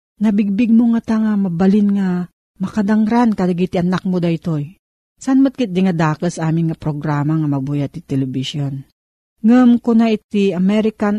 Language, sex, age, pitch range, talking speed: Filipino, female, 40-59, 165-215 Hz, 150 wpm